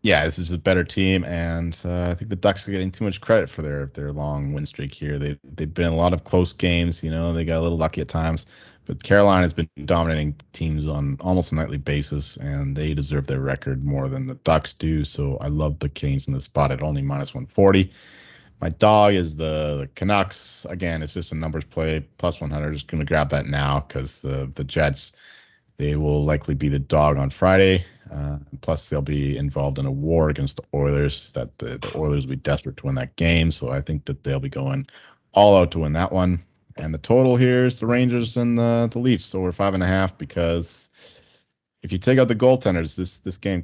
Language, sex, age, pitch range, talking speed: English, male, 30-49, 70-90 Hz, 235 wpm